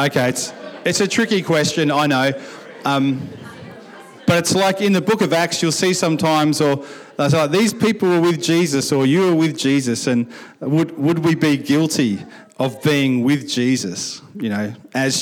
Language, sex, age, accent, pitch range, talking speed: English, male, 40-59, Australian, 130-170 Hz, 180 wpm